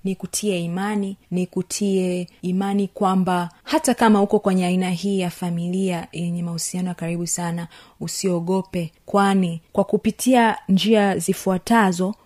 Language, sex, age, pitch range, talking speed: Swahili, female, 30-49, 180-205 Hz, 120 wpm